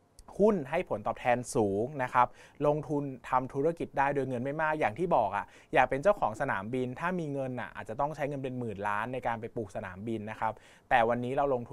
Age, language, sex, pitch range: 20-39, Thai, male, 105-135 Hz